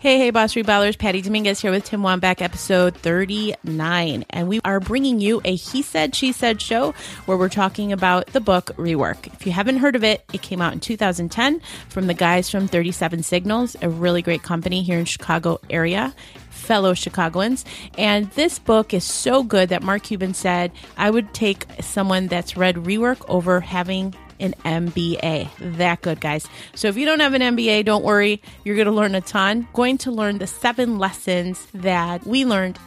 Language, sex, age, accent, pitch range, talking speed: English, female, 30-49, American, 175-215 Hz, 190 wpm